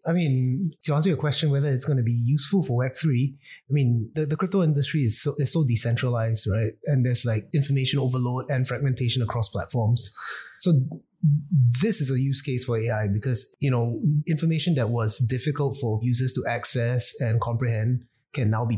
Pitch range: 115-140 Hz